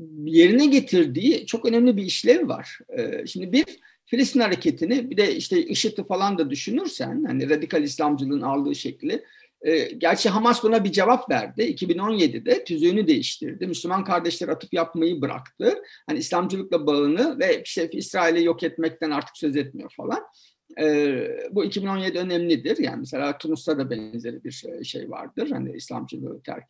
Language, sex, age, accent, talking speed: Turkish, male, 50-69, native, 150 wpm